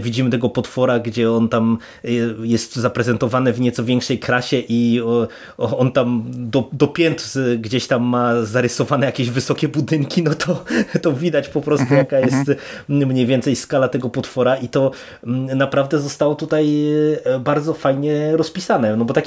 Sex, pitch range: male, 115-135 Hz